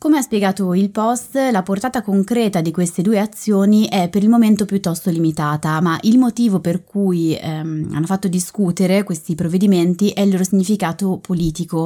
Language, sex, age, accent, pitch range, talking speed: Italian, female, 20-39, native, 170-205 Hz, 170 wpm